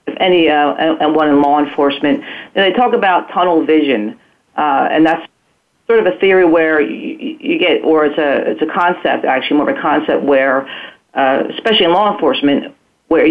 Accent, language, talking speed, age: American, English, 195 wpm, 40-59